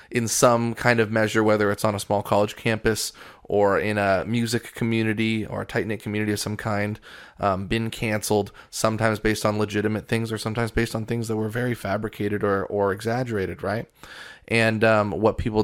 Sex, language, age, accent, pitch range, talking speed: male, English, 20-39, American, 105-130 Hz, 190 wpm